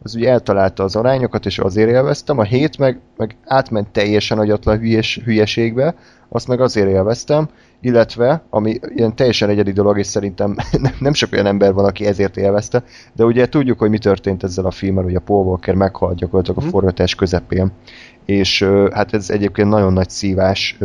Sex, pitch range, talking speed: male, 95-115 Hz, 180 wpm